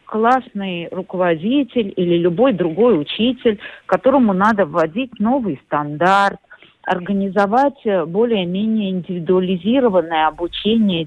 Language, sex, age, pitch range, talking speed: Russian, female, 40-59, 175-245 Hz, 80 wpm